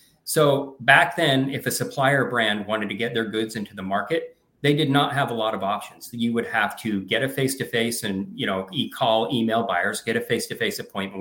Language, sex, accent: English, male, American